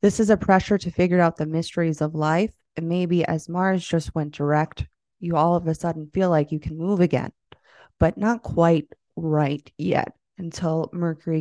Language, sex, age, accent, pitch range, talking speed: English, female, 20-39, American, 155-190 Hz, 190 wpm